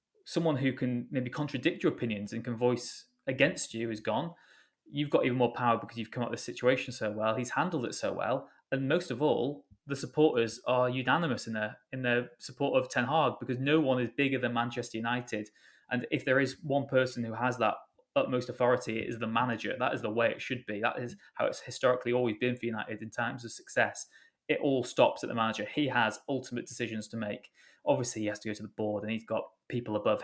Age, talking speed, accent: 20-39, 230 wpm, British